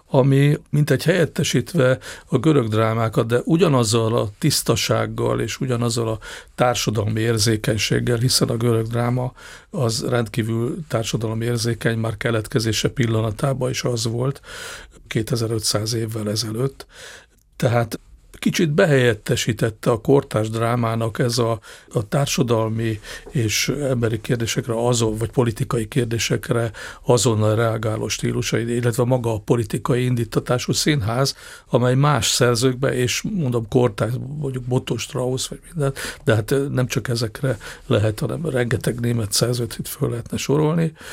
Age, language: 50-69, Hungarian